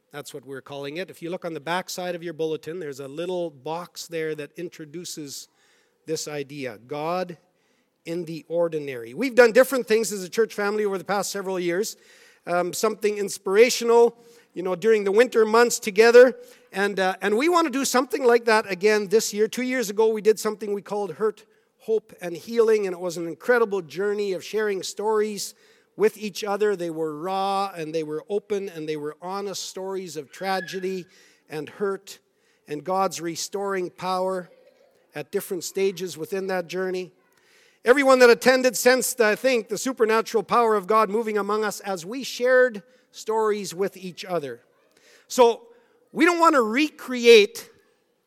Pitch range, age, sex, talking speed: 180-240 Hz, 50-69, male, 175 wpm